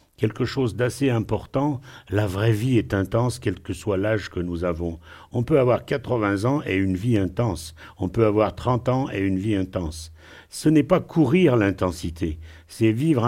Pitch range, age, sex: 95-130 Hz, 60-79, male